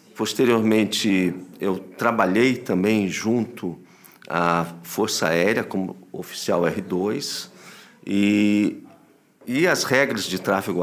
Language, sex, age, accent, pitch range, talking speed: Portuguese, male, 50-69, Brazilian, 95-115 Hz, 95 wpm